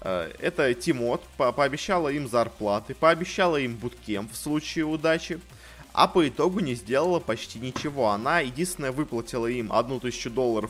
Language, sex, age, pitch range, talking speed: Russian, male, 20-39, 115-160 Hz, 140 wpm